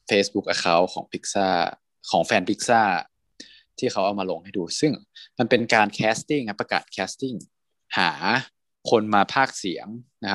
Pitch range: 95-135 Hz